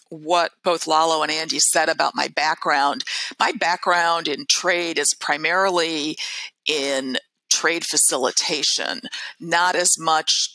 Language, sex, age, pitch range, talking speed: English, female, 50-69, 155-185 Hz, 120 wpm